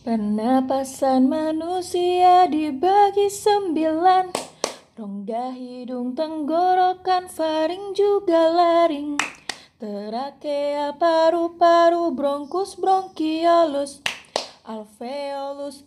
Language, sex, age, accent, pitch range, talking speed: Indonesian, female, 20-39, native, 230-315 Hz, 55 wpm